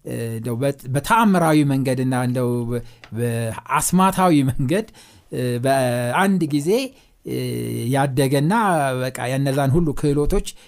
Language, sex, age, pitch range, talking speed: Amharic, male, 60-79, 125-185 Hz, 80 wpm